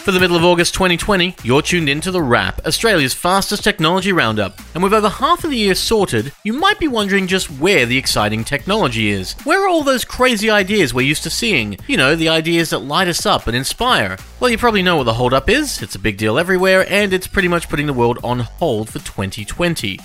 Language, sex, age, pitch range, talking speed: English, male, 30-49, 120-195 Hz, 230 wpm